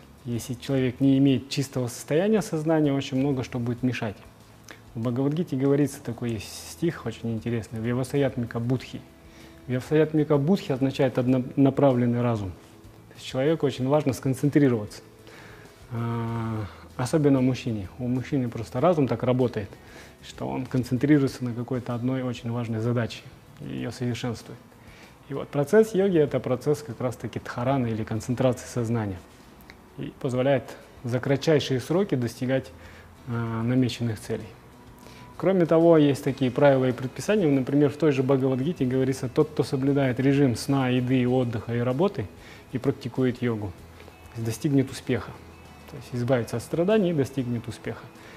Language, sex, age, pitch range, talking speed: Russian, male, 20-39, 115-140 Hz, 135 wpm